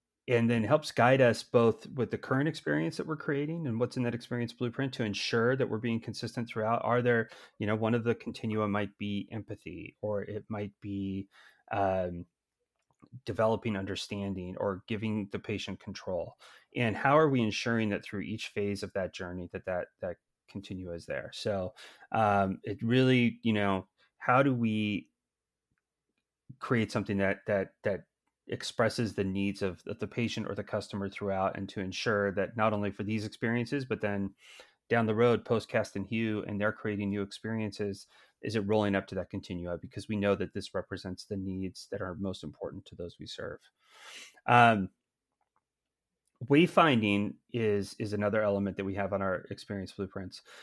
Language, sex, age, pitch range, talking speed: English, male, 30-49, 100-115 Hz, 180 wpm